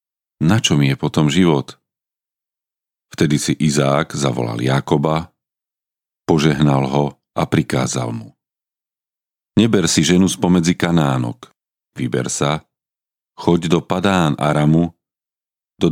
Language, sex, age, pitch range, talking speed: Slovak, male, 40-59, 75-95 Hz, 100 wpm